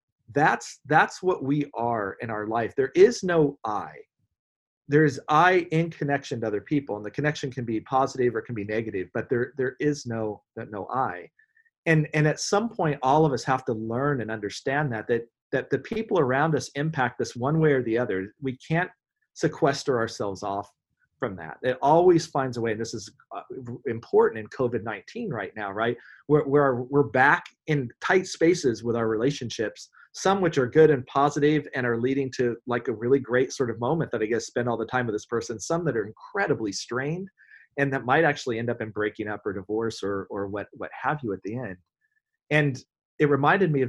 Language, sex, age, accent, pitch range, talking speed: English, male, 40-59, American, 110-150 Hz, 210 wpm